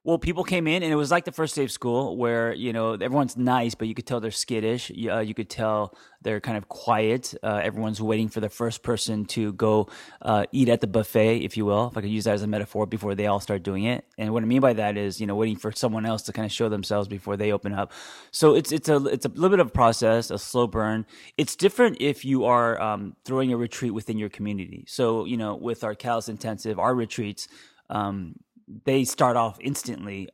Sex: male